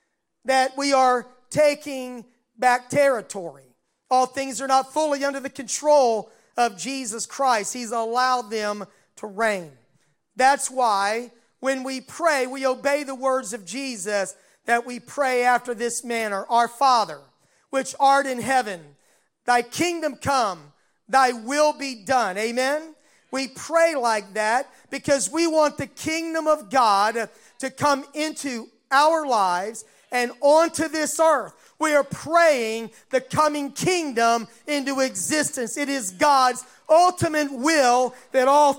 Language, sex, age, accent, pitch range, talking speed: English, male, 40-59, American, 220-275 Hz, 135 wpm